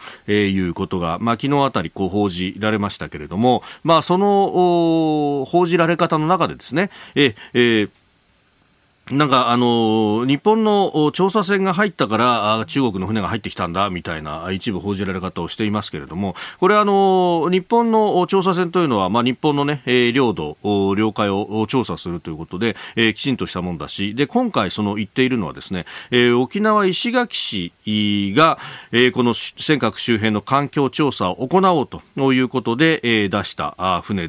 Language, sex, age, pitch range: Japanese, male, 40-59, 100-150 Hz